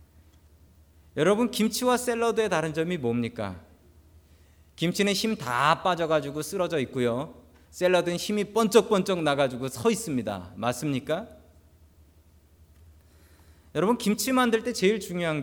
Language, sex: Korean, male